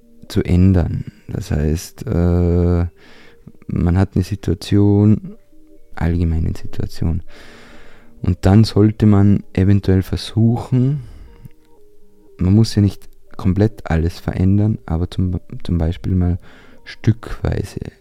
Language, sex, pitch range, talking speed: German, male, 90-105 Hz, 100 wpm